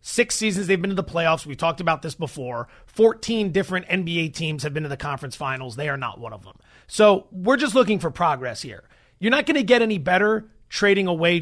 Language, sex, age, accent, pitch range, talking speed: English, male, 30-49, American, 160-205 Hz, 230 wpm